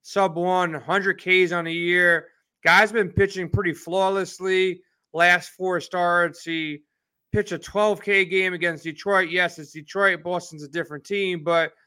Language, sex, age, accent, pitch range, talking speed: English, male, 30-49, American, 165-200 Hz, 150 wpm